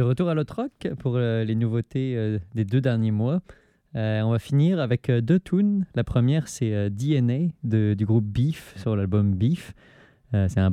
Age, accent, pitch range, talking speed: 20-39, French, 105-135 Hz, 200 wpm